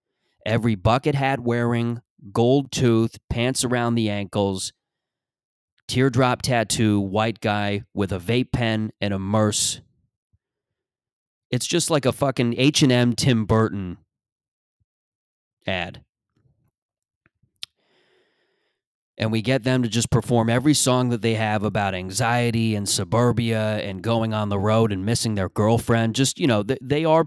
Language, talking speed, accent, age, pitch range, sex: English, 130 wpm, American, 30-49, 105-125 Hz, male